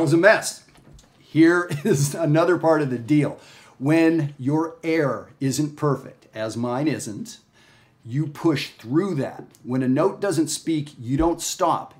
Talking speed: 150 wpm